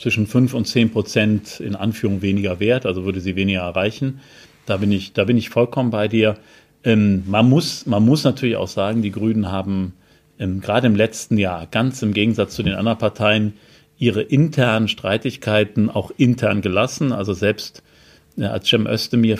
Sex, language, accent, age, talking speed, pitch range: male, German, German, 40-59, 180 wpm, 105-125 Hz